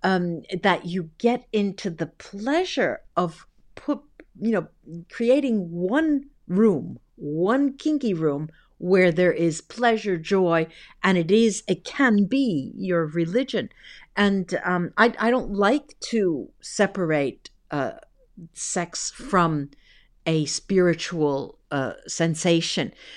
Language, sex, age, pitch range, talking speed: English, female, 50-69, 165-255 Hz, 115 wpm